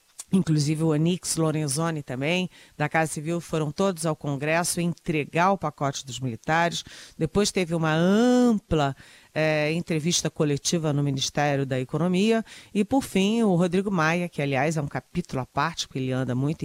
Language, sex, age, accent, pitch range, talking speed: Portuguese, female, 40-59, Brazilian, 145-180 Hz, 160 wpm